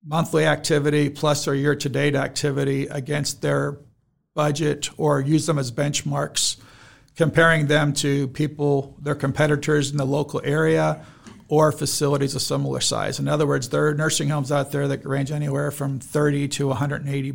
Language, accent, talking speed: English, American, 165 wpm